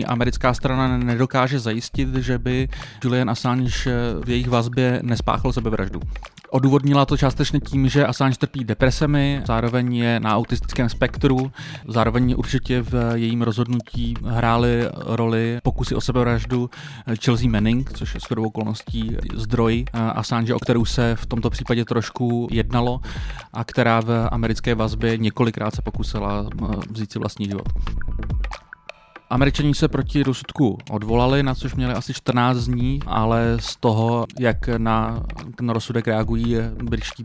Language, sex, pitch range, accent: Czech, male, 115-130 Hz, native